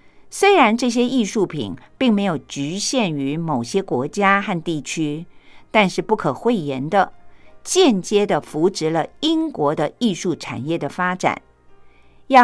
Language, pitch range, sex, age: Japanese, 155-230 Hz, female, 50-69